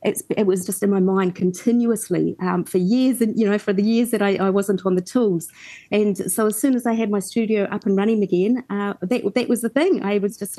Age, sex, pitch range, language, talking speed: 30-49, female, 185-225 Hz, English, 255 wpm